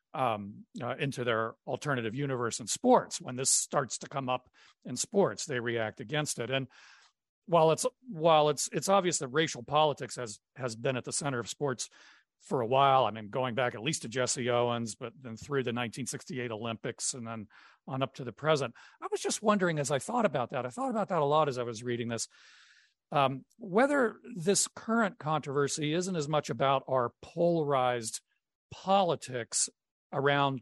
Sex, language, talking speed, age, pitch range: male, English, 190 wpm, 40-59, 125-165 Hz